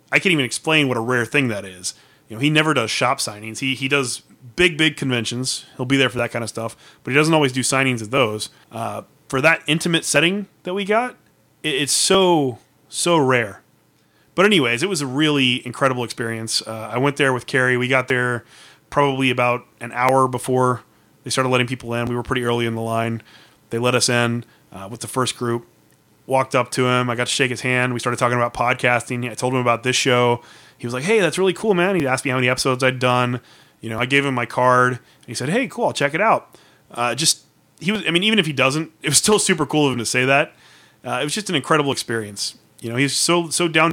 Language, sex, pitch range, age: English, male, 120-140 Hz, 30-49